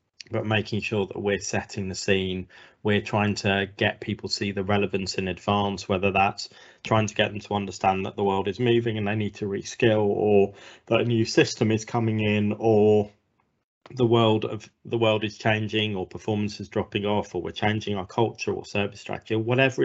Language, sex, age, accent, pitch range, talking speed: English, male, 20-39, British, 100-110 Hz, 205 wpm